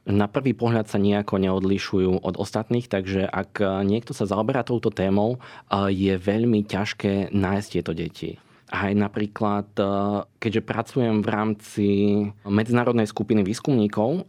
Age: 20-39